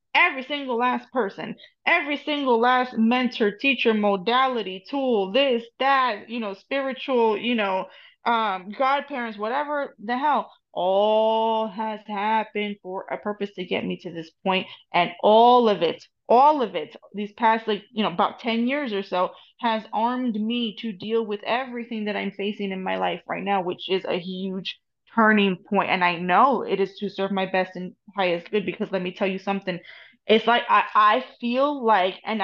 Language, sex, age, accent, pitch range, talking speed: English, female, 20-39, American, 200-245 Hz, 180 wpm